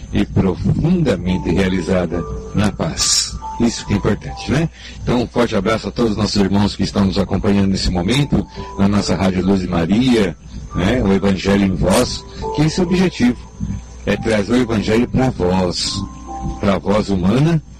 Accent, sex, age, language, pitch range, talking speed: Brazilian, male, 60-79, Portuguese, 90-110 Hz, 170 wpm